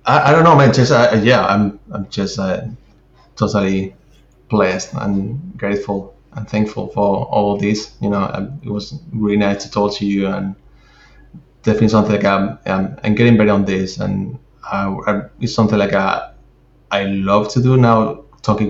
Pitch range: 100-110 Hz